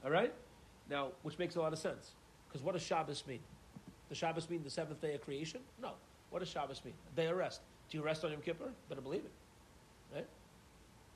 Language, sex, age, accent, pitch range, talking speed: English, male, 40-59, American, 145-185 Hz, 205 wpm